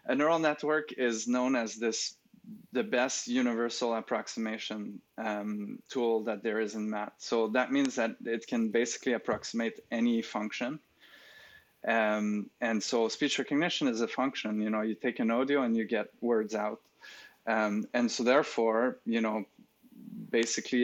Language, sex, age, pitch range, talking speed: English, male, 20-39, 110-130 Hz, 155 wpm